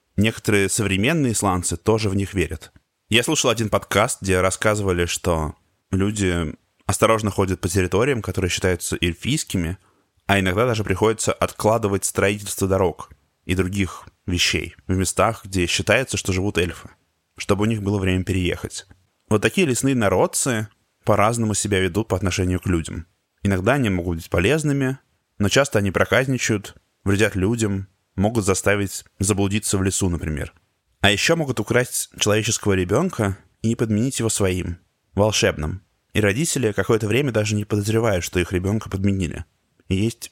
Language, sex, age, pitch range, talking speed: Russian, male, 20-39, 90-110 Hz, 145 wpm